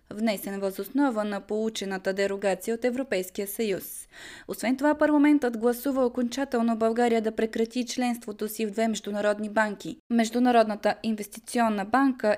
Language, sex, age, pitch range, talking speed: Bulgarian, female, 20-39, 205-245 Hz, 125 wpm